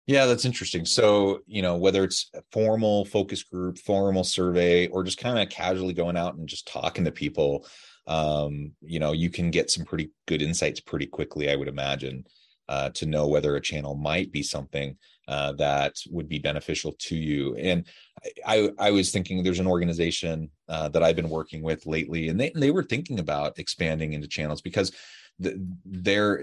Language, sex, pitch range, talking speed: English, male, 75-95 Hz, 195 wpm